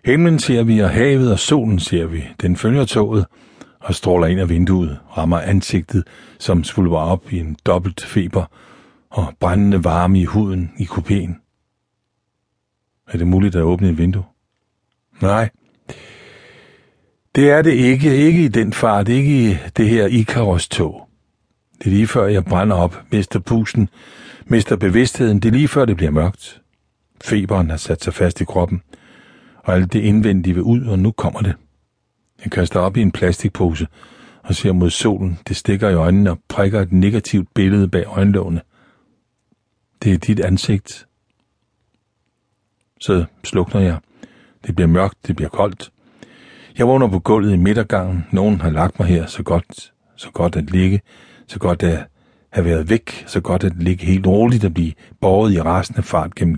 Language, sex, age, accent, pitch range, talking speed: Danish, male, 60-79, native, 90-110 Hz, 170 wpm